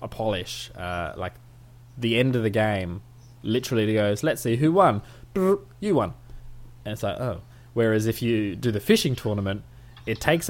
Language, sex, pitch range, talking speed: English, male, 105-125 Hz, 175 wpm